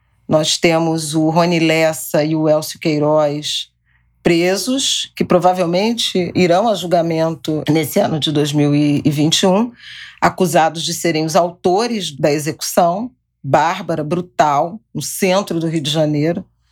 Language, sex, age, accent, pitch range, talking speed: Portuguese, female, 40-59, Brazilian, 155-195 Hz, 120 wpm